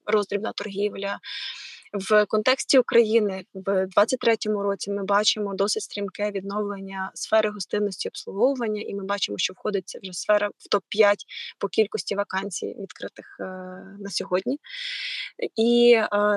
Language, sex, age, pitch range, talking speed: Ukrainian, female, 20-39, 200-240 Hz, 125 wpm